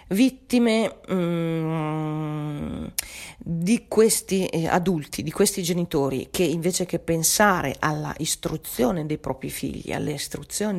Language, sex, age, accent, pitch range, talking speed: Italian, female, 40-59, native, 150-185 Hz, 105 wpm